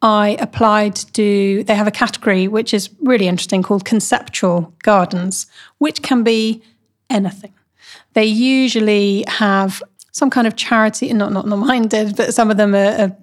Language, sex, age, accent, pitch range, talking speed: English, female, 30-49, British, 195-225 Hz, 155 wpm